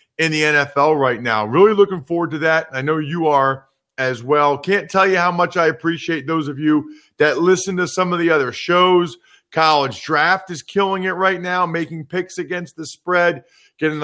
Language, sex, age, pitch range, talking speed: English, male, 40-59, 155-195 Hz, 200 wpm